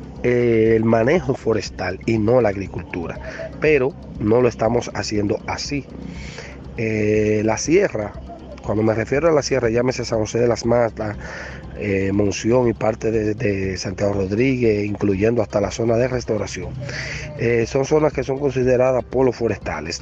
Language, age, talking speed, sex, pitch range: English, 30-49, 150 wpm, male, 105-125 Hz